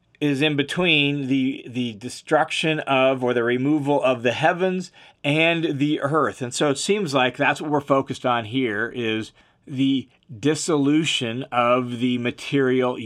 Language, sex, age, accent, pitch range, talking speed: English, male, 40-59, American, 130-155 Hz, 150 wpm